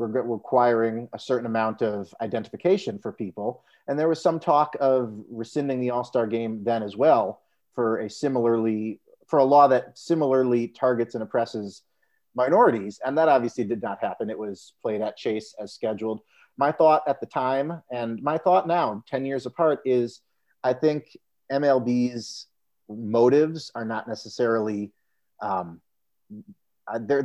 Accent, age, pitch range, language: American, 30-49, 110-130 Hz, English